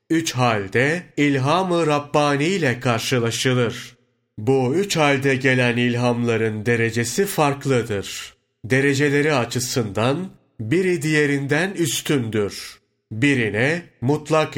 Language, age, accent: Turkish, 40-59, native